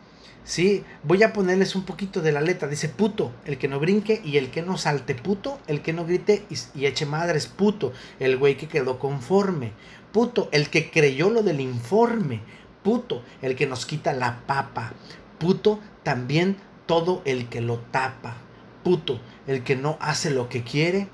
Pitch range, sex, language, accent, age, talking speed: 145-195 Hz, male, Spanish, Mexican, 40-59, 180 wpm